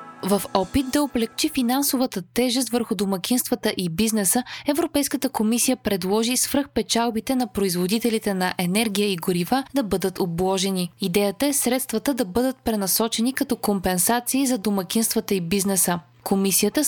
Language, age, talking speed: Bulgarian, 20-39, 130 wpm